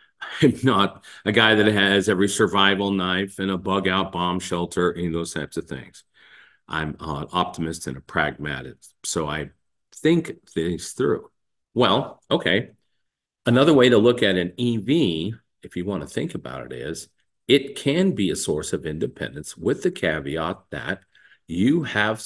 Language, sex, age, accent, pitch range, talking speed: English, male, 50-69, American, 85-105 Hz, 165 wpm